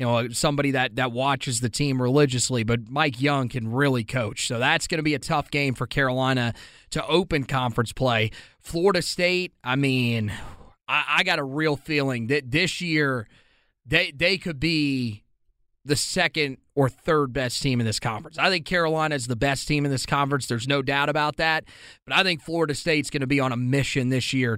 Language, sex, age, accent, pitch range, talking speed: English, male, 30-49, American, 130-170 Hz, 200 wpm